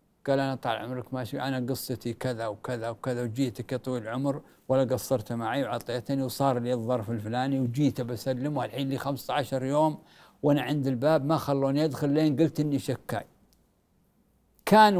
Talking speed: 150 wpm